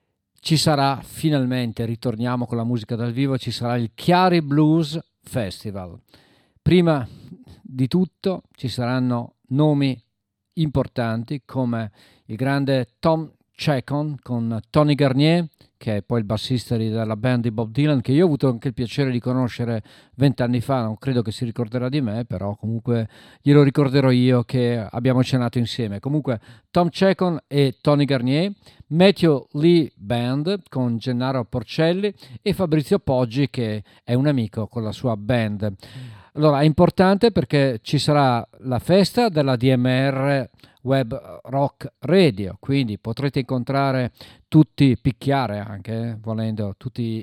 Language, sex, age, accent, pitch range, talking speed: Italian, male, 50-69, native, 115-145 Hz, 140 wpm